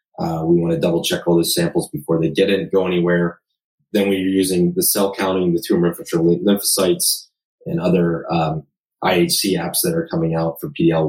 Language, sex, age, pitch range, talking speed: English, male, 30-49, 85-105 Hz, 190 wpm